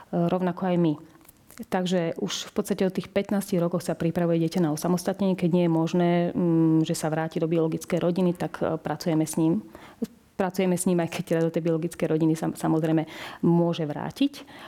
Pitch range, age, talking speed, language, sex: 165-200 Hz, 40-59, 190 wpm, Slovak, female